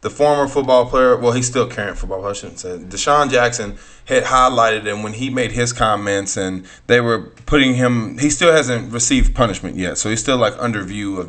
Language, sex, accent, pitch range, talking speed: English, male, American, 105-130 Hz, 215 wpm